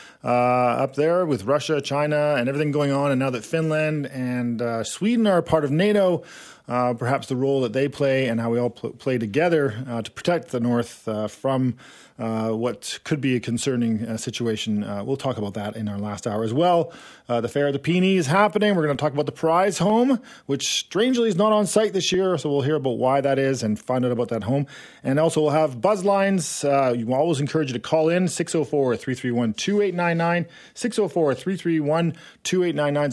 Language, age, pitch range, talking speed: English, 40-59, 125-170 Hz, 210 wpm